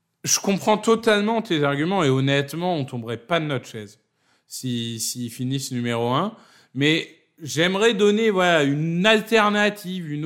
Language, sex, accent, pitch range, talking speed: French, male, French, 140-185 Hz, 150 wpm